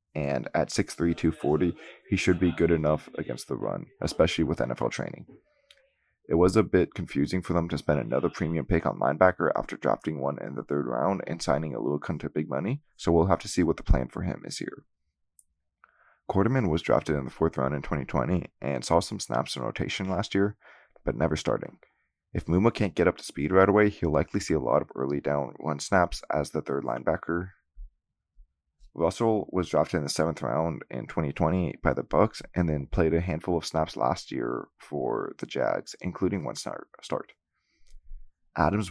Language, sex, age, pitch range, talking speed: English, male, 20-39, 75-90 Hz, 195 wpm